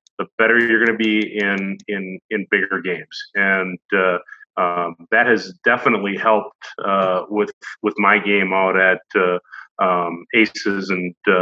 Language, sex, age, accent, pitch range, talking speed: English, male, 40-59, American, 95-110 Hz, 150 wpm